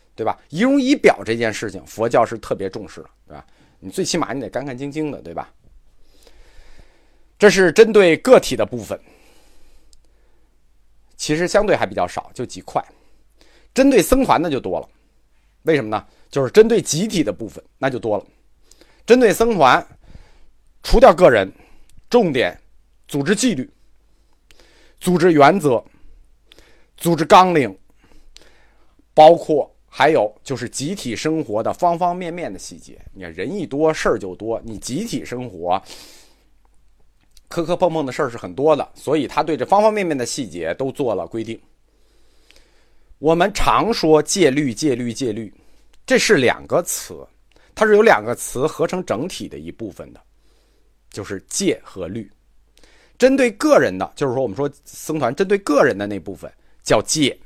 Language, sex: Chinese, male